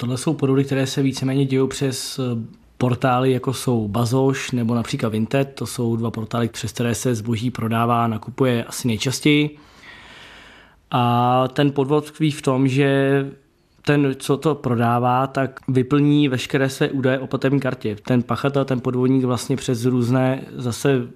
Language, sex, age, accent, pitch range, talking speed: Czech, male, 20-39, native, 120-135 Hz, 155 wpm